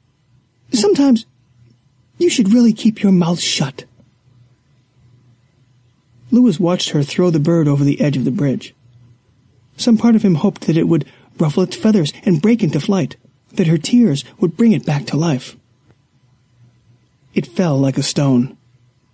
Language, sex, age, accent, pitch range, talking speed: English, male, 30-49, American, 125-175 Hz, 155 wpm